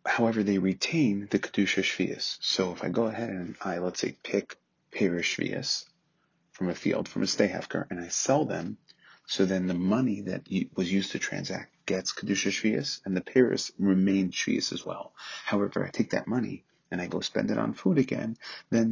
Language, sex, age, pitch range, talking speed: English, male, 30-49, 95-115 Hz, 190 wpm